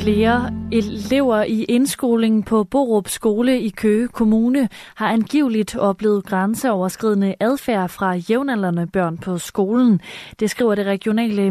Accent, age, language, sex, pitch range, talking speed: native, 20-39, Danish, female, 190-230 Hz, 125 wpm